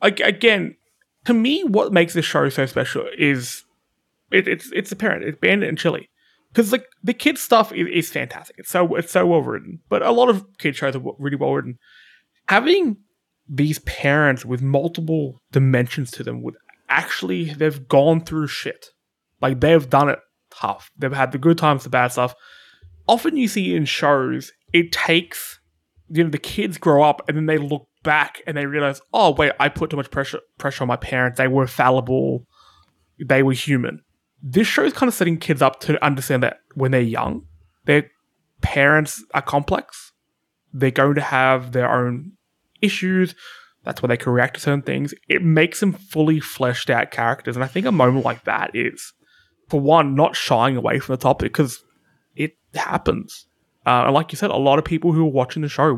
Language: English